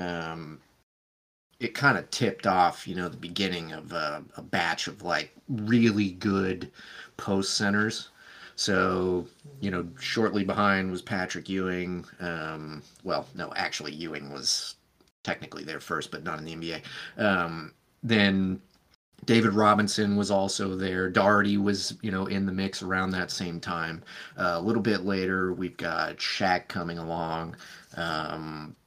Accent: American